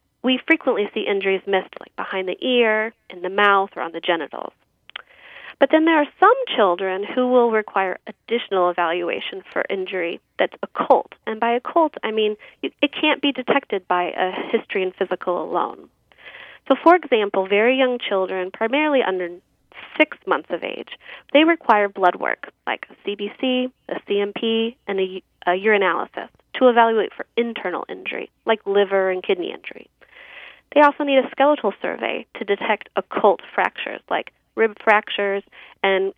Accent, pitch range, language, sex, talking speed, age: American, 190-265 Hz, English, female, 160 wpm, 30-49